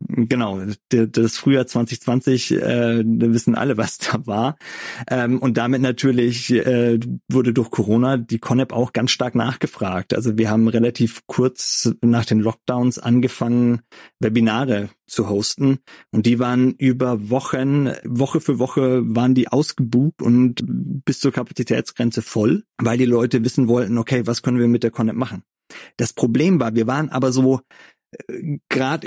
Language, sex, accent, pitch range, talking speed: German, male, German, 115-130 Hz, 145 wpm